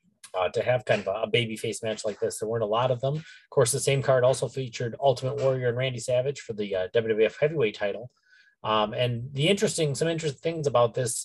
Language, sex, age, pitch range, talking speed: English, male, 30-49, 110-150 Hz, 230 wpm